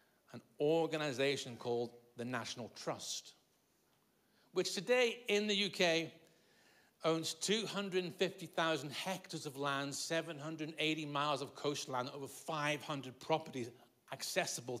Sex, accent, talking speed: male, British, 95 wpm